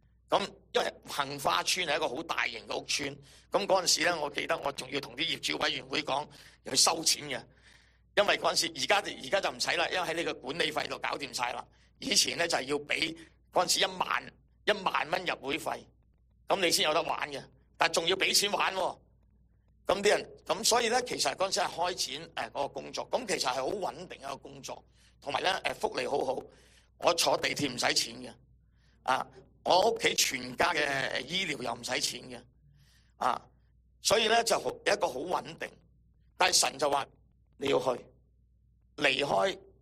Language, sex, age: English, male, 50-69